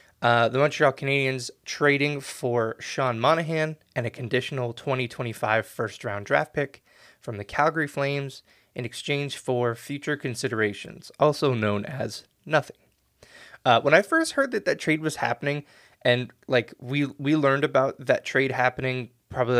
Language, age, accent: English, 20-39, American